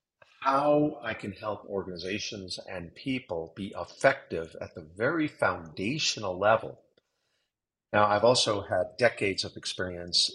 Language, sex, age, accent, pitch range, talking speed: English, male, 50-69, American, 90-110 Hz, 120 wpm